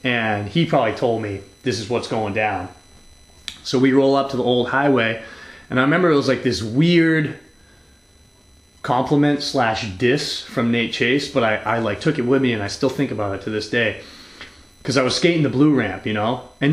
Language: English